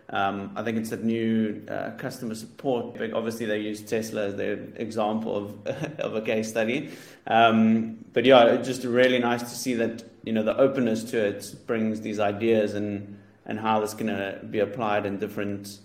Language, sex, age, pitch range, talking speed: English, male, 30-49, 105-115 Hz, 190 wpm